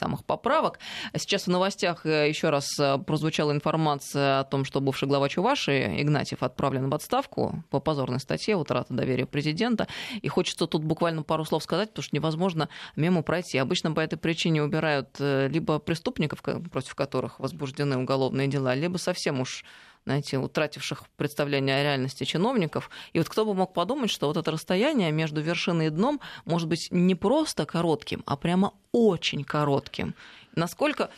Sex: female